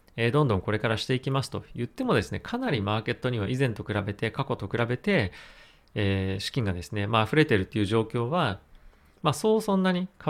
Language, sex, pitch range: Japanese, male, 105-150 Hz